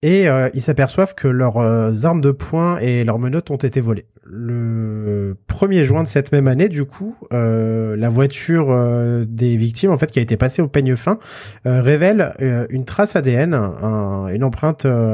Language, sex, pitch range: French, male, 120-155 Hz